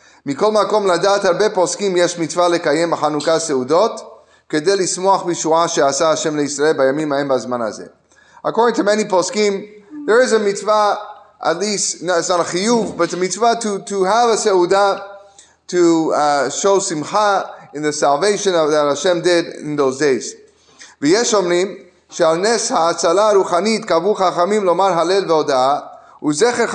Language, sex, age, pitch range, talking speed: English, male, 30-49, 160-210 Hz, 80 wpm